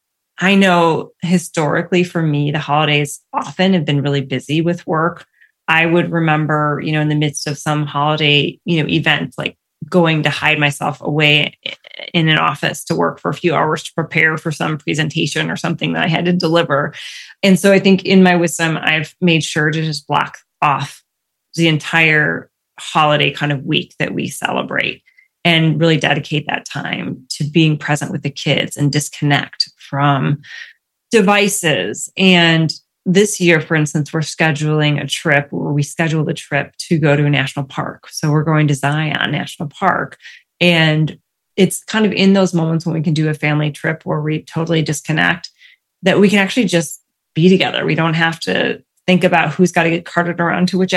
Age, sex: 30-49, female